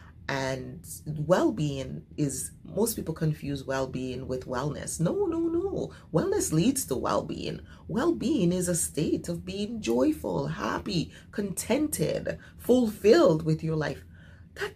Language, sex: English, female